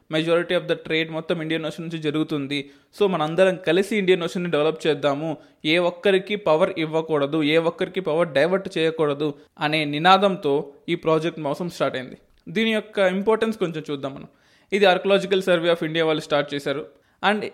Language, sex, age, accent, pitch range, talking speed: Telugu, male, 20-39, native, 160-190 Hz, 165 wpm